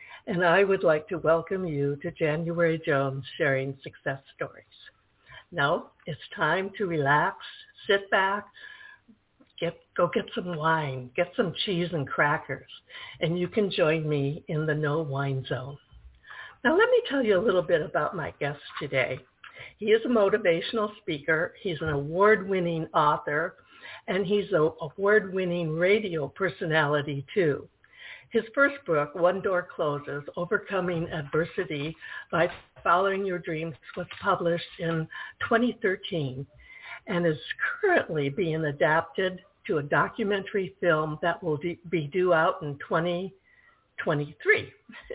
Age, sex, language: 60-79, female, English